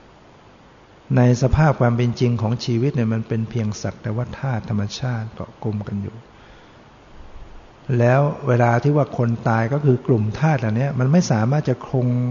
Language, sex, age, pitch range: Thai, male, 60-79, 110-130 Hz